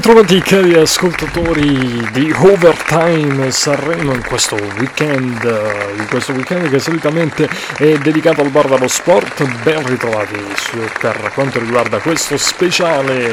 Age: 30-49